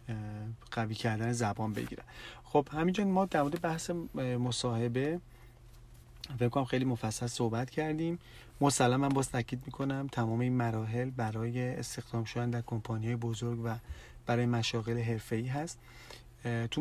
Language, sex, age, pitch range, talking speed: Persian, male, 40-59, 115-135 Hz, 125 wpm